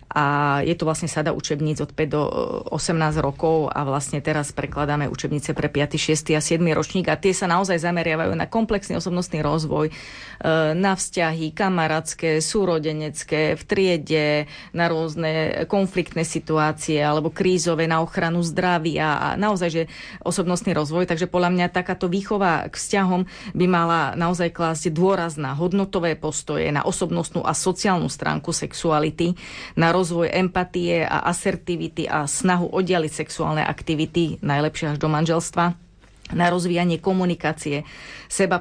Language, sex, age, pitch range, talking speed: Slovak, female, 30-49, 155-180 Hz, 140 wpm